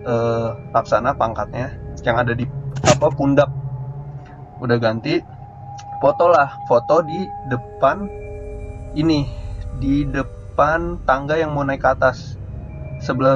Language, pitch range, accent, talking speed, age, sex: Indonesian, 115-140 Hz, native, 110 wpm, 20-39, male